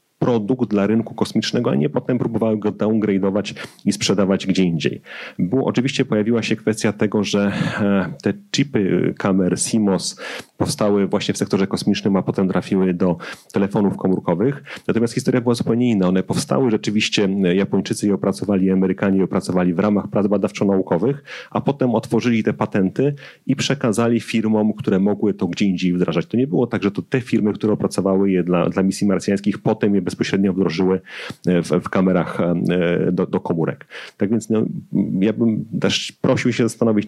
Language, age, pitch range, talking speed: Polish, 30-49, 95-115 Hz, 165 wpm